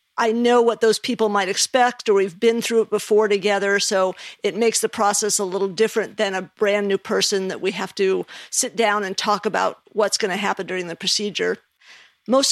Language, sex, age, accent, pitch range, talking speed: English, female, 50-69, American, 195-225 Hz, 210 wpm